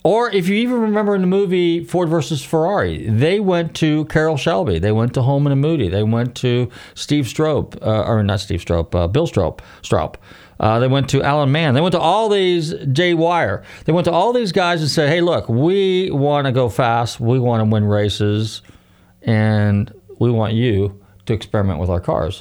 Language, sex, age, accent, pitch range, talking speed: English, male, 40-59, American, 100-150 Hz, 210 wpm